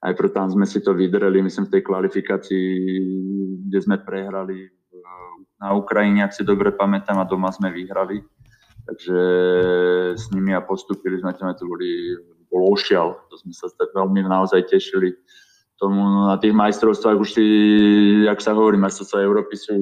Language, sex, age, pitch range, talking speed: Slovak, male, 20-39, 95-110 Hz, 160 wpm